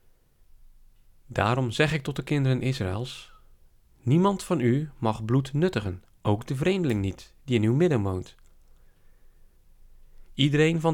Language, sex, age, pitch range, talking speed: Dutch, male, 40-59, 105-150 Hz, 130 wpm